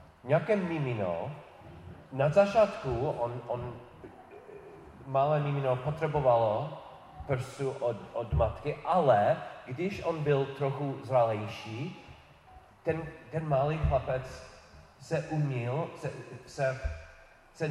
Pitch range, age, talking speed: 120-155 Hz, 30-49, 90 wpm